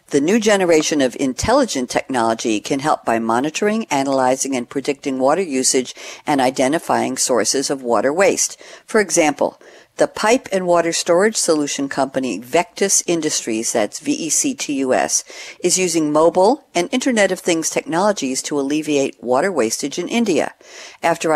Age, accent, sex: 50-69, American, female